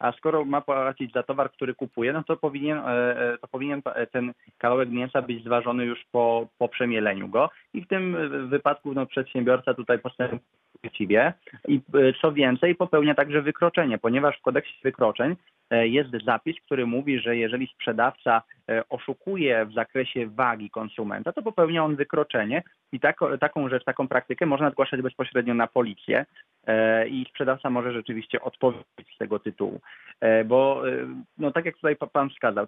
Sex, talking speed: male, 155 wpm